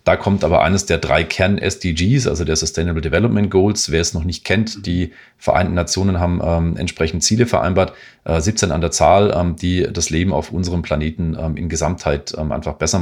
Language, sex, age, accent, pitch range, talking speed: German, male, 40-59, German, 80-100 Hz, 200 wpm